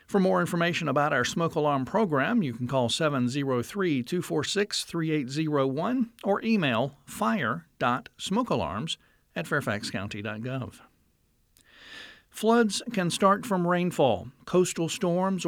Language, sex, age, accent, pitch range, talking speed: English, male, 50-69, American, 125-175 Hz, 95 wpm